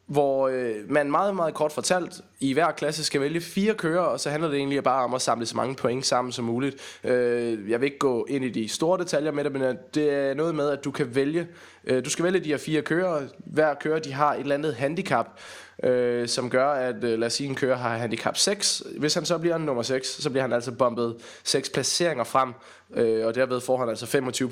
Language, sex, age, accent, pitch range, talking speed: Danish, male, 20-39, native, 125-160 Hz, 230 wpm